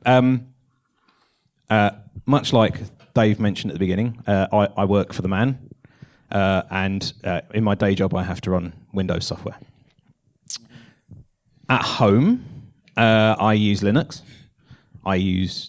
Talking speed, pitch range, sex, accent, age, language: 140 wpm, 100-135 Hz, male, British, 30-49, English